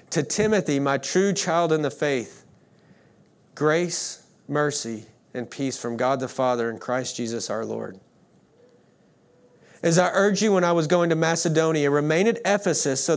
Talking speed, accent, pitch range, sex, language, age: 160 wpm, American, 155-190 Hz, male, English, 40-59